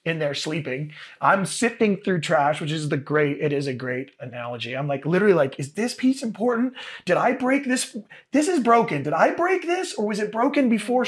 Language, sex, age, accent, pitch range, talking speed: English, male, 30-49, American, 140-210 Hz, 215 wpm